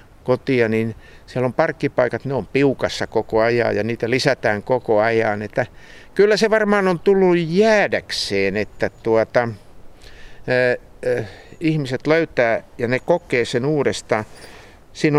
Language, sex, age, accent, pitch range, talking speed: Finnish, male, 50-69, native, 110-155 Hz, 135 wpm